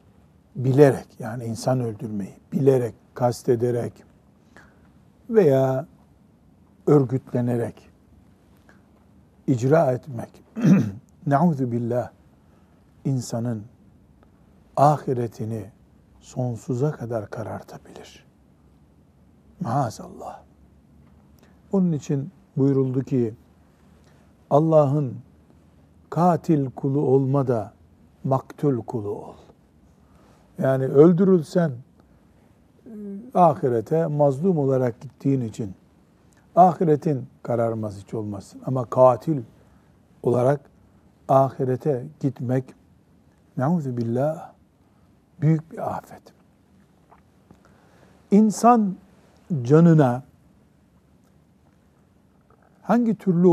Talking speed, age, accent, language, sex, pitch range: 65 wpm, 60-79, native, Turkish, male, 100-150 Hz